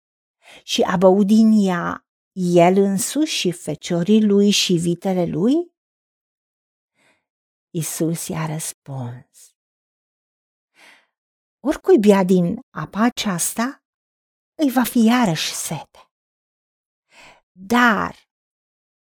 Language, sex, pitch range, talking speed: Romanian, female, 195-260 Hz, 75 wpm